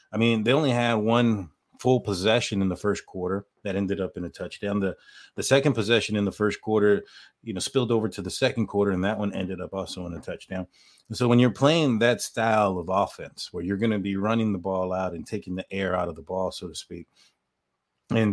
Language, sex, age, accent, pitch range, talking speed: English, male, 30-49, American, 95-110 Hz, 240 wpm